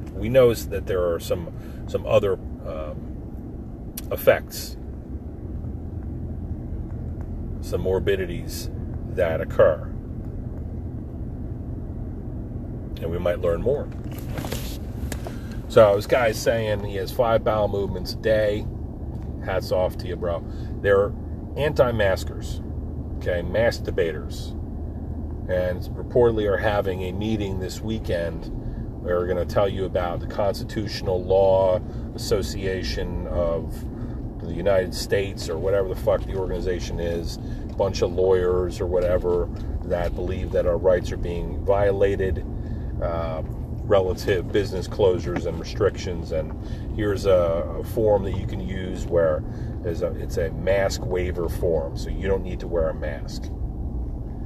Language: English